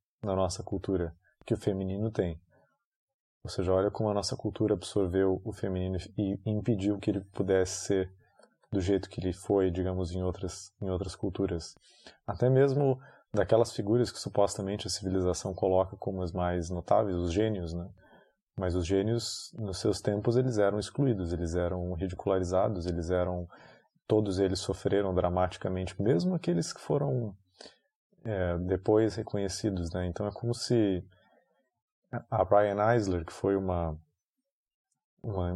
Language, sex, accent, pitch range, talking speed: Portuguese, male, Brazilian, 95-110 Hz, 145 wpm